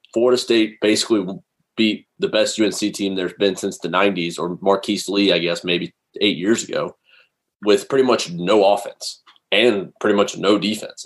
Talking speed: 175 wpm